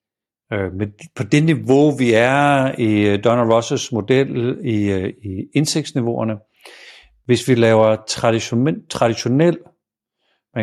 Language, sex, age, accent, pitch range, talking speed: Danish, male, 60-79, native, 110-145 Hz, 100 wpm